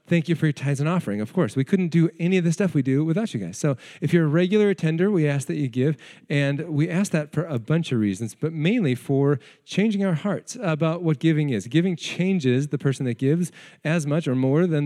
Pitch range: 135-175 Hz